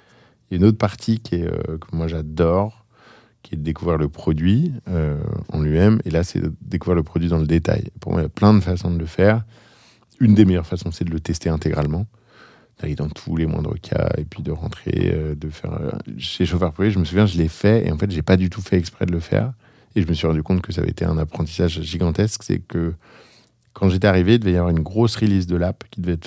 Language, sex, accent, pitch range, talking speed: French, male, French, 85-105 Hz, 270 wpm